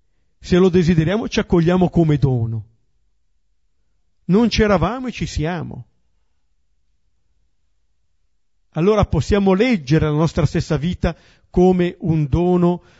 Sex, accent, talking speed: male, native, 100 wpm